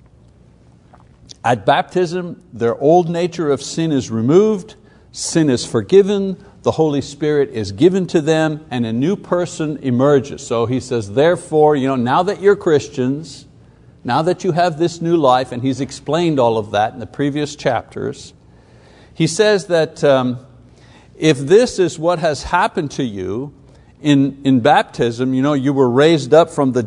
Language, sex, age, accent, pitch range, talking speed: English, male, 60-79, American, 130-180 Hz, 165 wpm